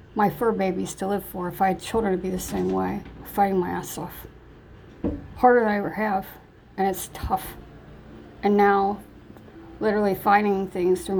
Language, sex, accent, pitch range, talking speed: English, female, American, 175-200 Hz, 175 wpm